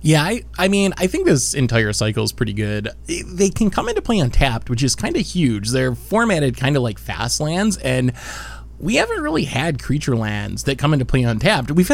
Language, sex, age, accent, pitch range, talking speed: English, male, 20-39, American, 115-170 Hz, 215 wpm